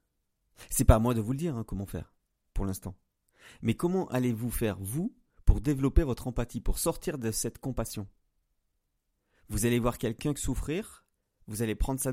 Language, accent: French, French